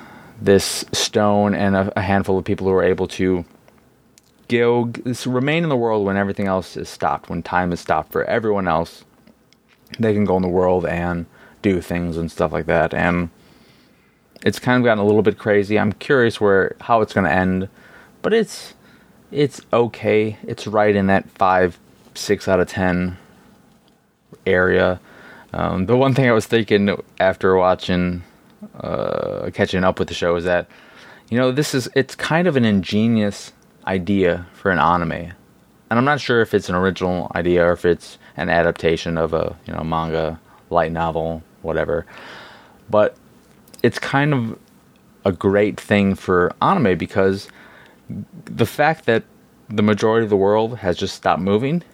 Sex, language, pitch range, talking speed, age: male, English, 90-120 Hz, 170 wpm, 20-39